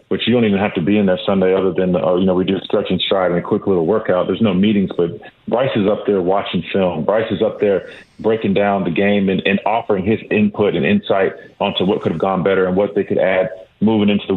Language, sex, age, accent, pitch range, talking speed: English, male, 40-59, American, 90-105 Hz, 265 wpm